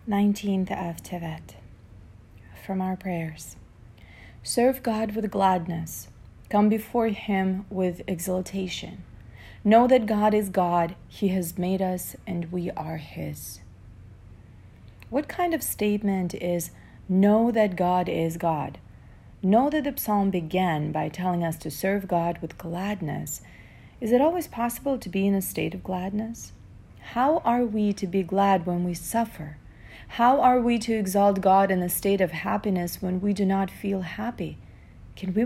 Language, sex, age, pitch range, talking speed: English, female, 40-59, 160-215 Hz, 150 wpm